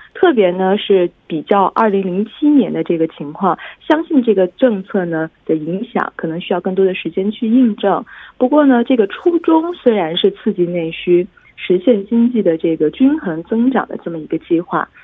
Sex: female